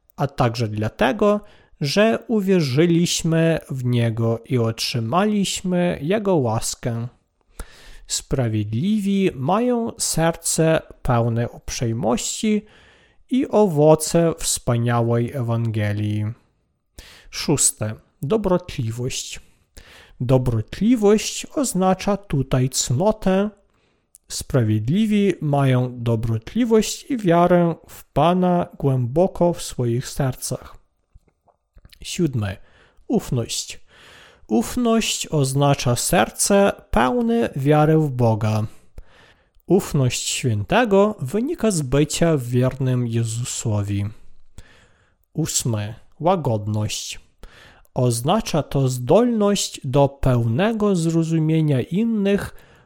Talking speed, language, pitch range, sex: 70 wpm, Polish, 115-190 Hz, male